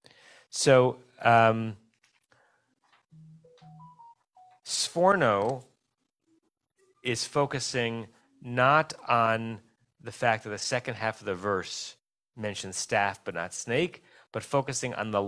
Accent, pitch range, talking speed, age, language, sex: American, 115-160 Hz, 100 wpm, 30-49, English, male